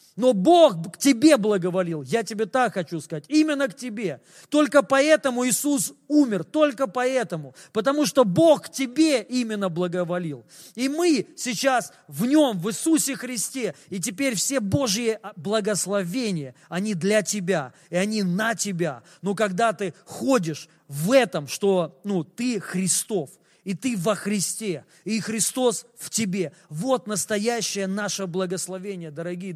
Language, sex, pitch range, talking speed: Russian, male, 185-255 Hz, 140 wpm